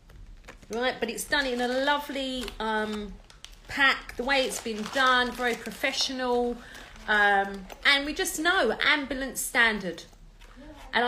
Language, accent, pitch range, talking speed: English, British, 220-290 Hz, 130 wpm